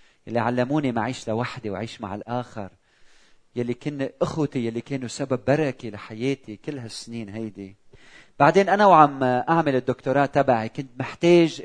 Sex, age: male, 40-59